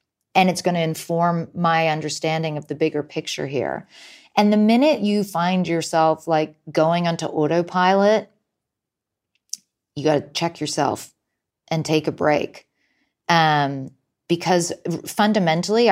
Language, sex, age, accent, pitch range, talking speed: English, female, 30-49, American, 155-205 Hz, 130 wpm